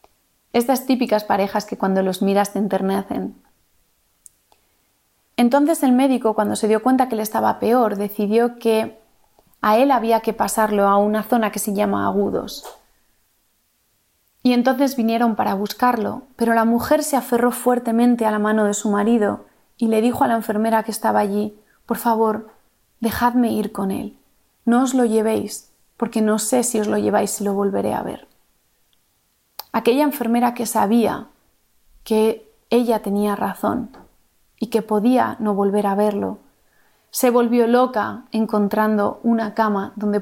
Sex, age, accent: female, 30-49, Spanish